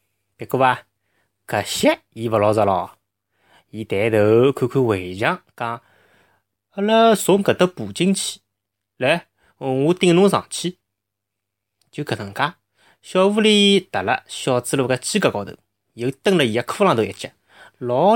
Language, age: Chinese, 30-49